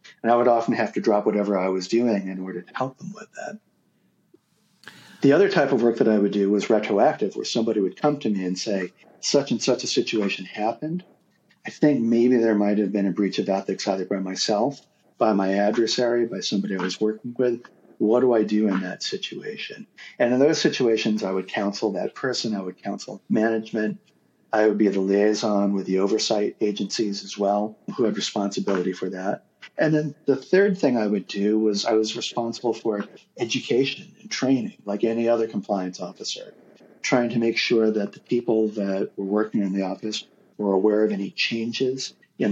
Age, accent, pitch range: 40-59, American, 100-120 Hz